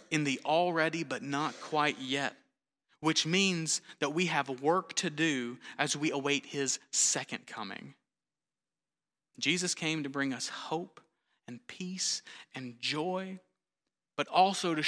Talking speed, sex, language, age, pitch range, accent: 135 wpm, male, English, 30-49, 130-155 Hz, American